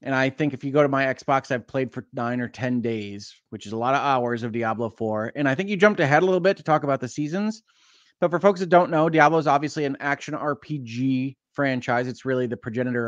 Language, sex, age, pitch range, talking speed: English, male, 30-49, 125-155 Hz, 255 wpm